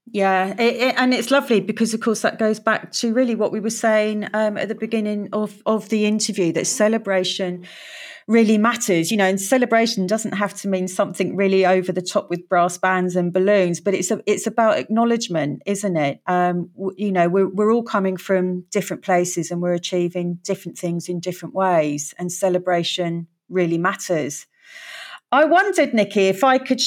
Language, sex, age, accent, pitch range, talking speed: English, female, 40-59, British, 185-235 Hz, 190 wpm